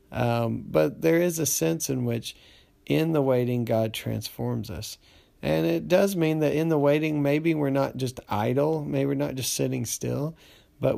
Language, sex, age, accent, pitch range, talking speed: English, male, 40-59, American, 115-145 Hz, 185 wpm